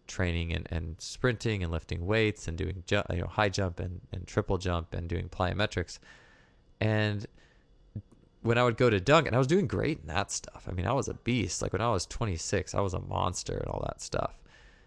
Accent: American